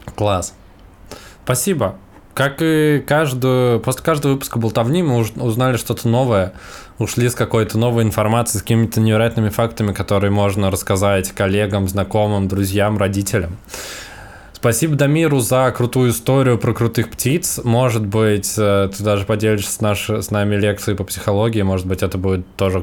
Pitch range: 95-110 Hz